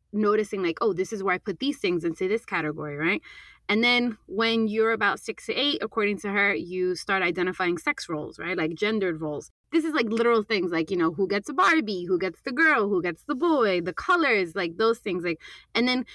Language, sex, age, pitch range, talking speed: English, female, 20-39, 180-230 Hz, 230 wpm